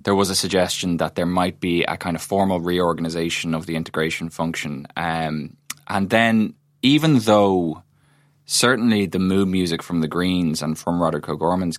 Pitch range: 80-95 Hz